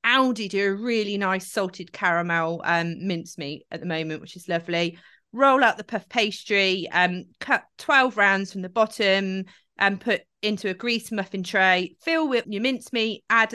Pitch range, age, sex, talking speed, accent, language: 185-225 Hz, 30-49, female, 175 wpm, British, English